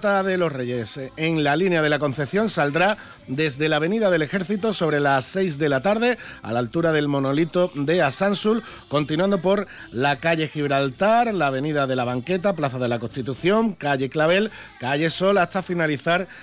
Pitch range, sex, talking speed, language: 140-180 Hz, male, 175 wpm, Spanish